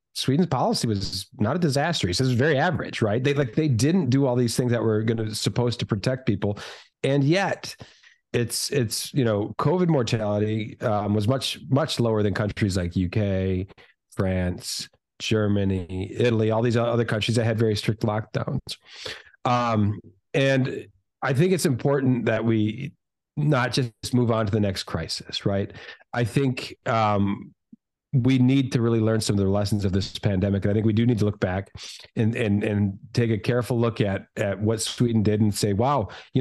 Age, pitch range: 40-59, 105-130 Hz